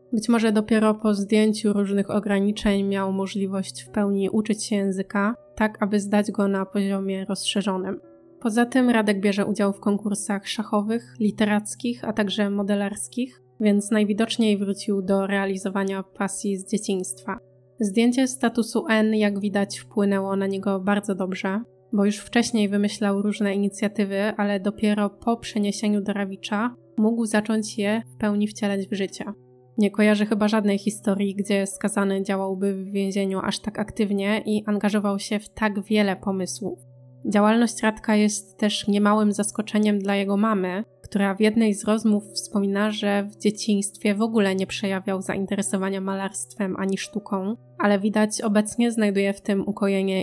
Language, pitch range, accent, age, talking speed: Polish, 195-215 Hz, native, 20-39, 150 wpm